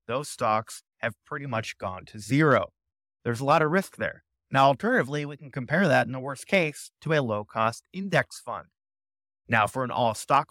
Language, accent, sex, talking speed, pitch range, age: English, American, male, 190 wpm, 110-155 Hz, 30-49